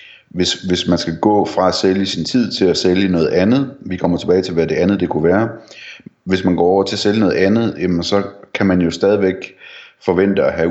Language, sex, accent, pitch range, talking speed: Danish, male, native, 80-95 Hz, 235 wpm